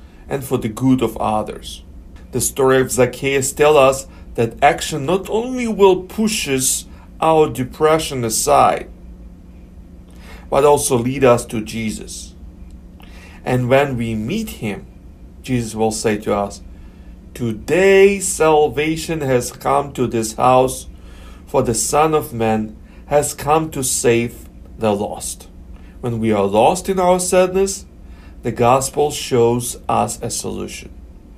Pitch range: 95-150 Hz